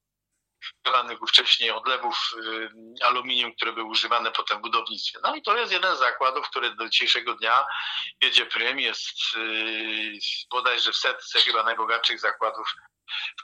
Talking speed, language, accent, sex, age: 140 wpm, Polish, native, male, 50-69